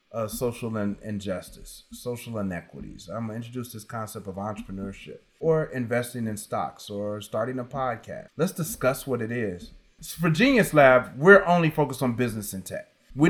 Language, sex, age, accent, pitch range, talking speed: English, male, 30-49, American, 110-145 Hz, 165 wpm